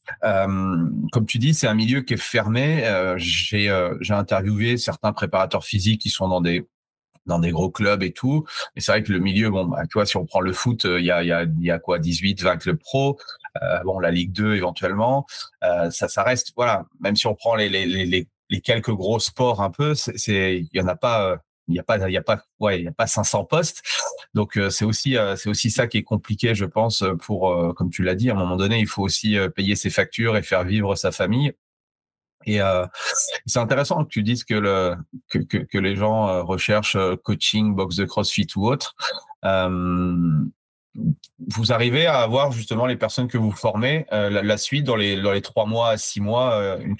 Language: French